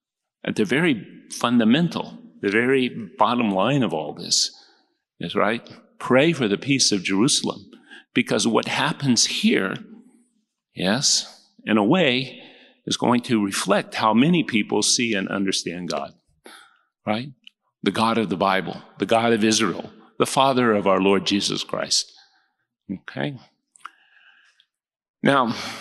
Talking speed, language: 135 wpm, English